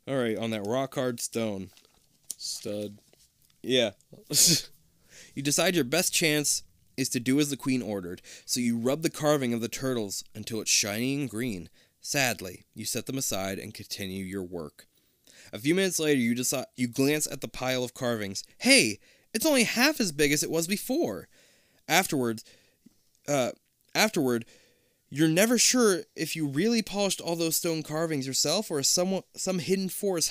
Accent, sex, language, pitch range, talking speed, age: American, male, English, 125-190 Hz, 170 wpm, 20-39